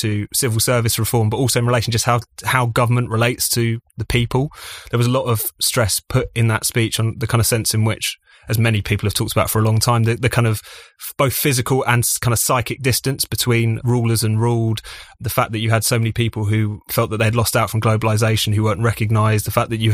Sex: male